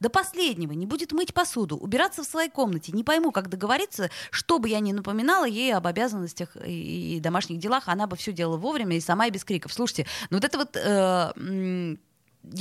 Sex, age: female, 20-39